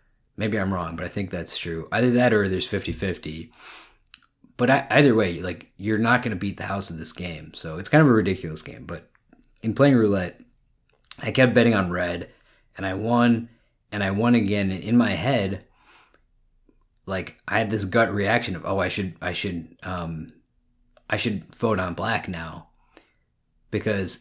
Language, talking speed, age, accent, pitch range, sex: English, 185 wpm, 20-39, American, 90-115 Hz, male